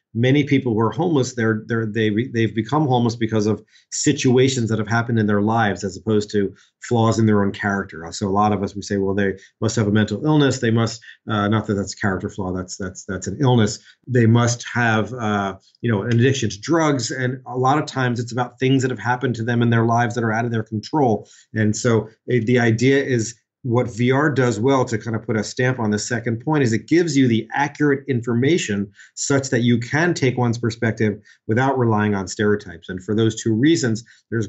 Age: 40-59